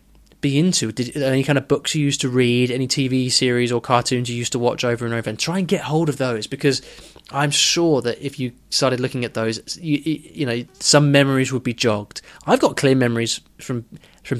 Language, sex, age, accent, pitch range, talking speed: English, male, 20-39, British, 115-145 Hz, 220 wpm